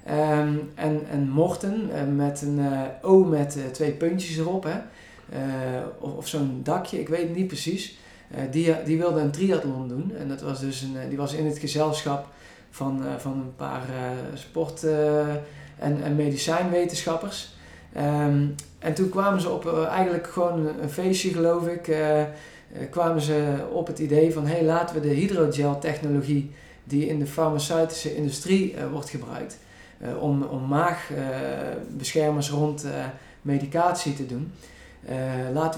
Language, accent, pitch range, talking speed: Dutch, Dutch, 140-165 Hz, 160 wpm